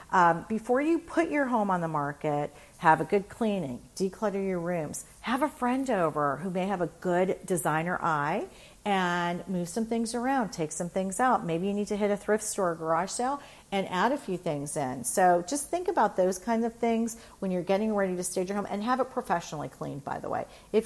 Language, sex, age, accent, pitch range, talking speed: English, female, 40-59, American, 175-225 Hz, 220 wpm